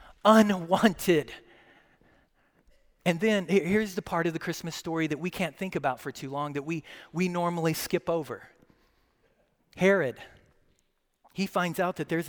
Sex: male